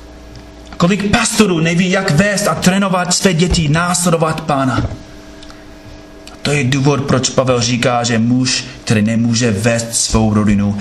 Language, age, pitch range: Czech, 30-49, 105-170 Hz